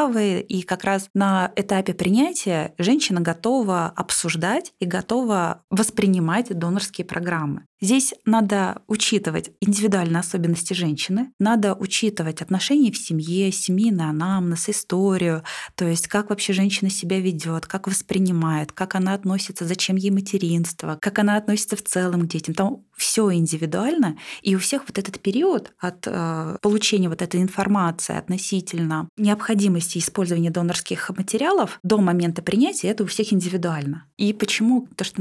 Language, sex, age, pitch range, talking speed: Russian, female, 20-39, 170-205 Hz, 140 wpm